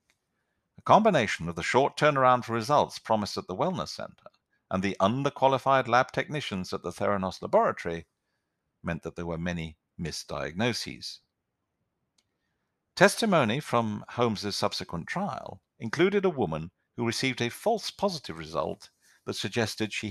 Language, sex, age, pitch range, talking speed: English, male, 50-69, 95-135 Hz, 135 wpm